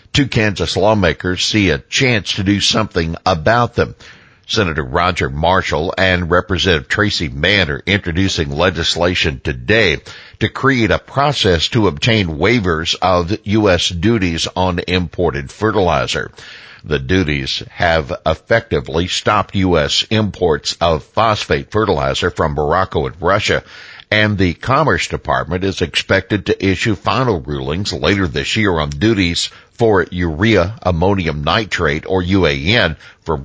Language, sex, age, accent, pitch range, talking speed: English, male, 60-79, American, 80-105 Hz, 125 wpm